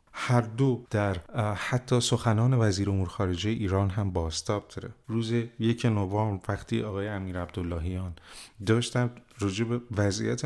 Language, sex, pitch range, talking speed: Persian, male, 95-115 Hz, 120 wpm